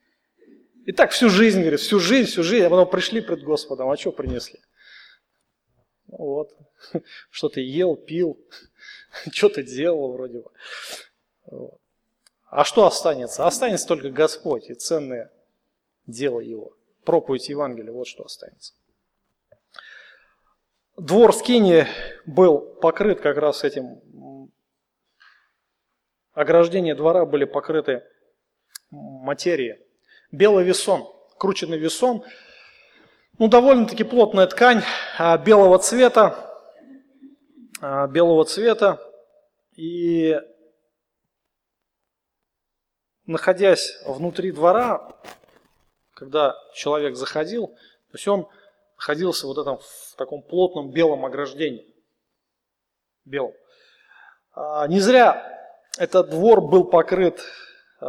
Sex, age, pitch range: male, 30-49, 155-240 Hz